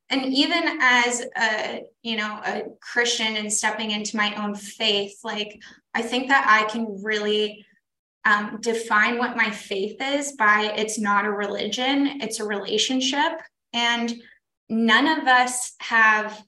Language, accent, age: English, American, 10-29